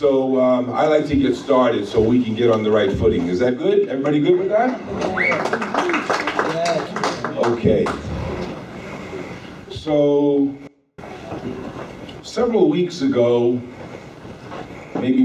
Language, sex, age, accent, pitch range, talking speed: English, male, 50-69, American, 105-145 Hz, 110 wpm